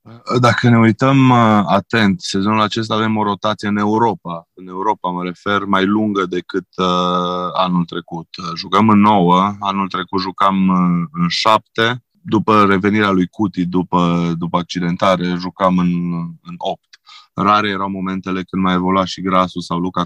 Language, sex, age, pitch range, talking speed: Romanian, male, 20-39, 85-100 Hz, 145 wpm